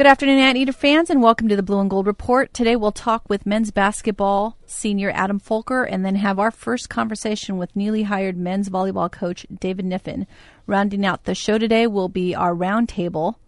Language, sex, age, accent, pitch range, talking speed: English, female, 30-49, American, 185-225 Hz, 200 wpm